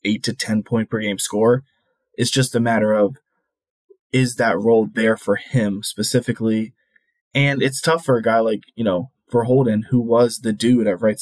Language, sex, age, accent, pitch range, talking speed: English, male, 20-39, American, 105-125 Hz, 195 wpm